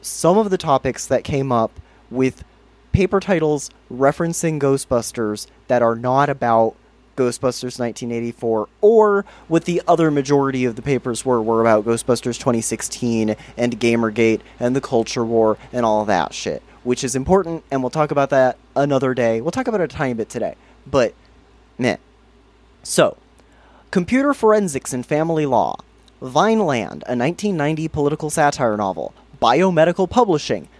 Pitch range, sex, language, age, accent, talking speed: 125-190 Hz, male, English, 30-49, American, 145 wpm